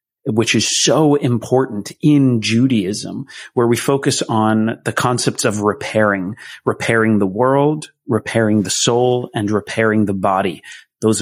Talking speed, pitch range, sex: 135 wpm, 105-130 Hz, male